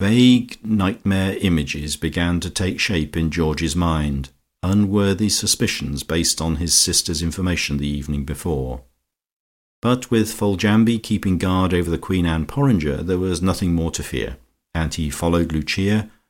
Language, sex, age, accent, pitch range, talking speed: English, male, 50-69, British, 80-105 Hz, 145 wpm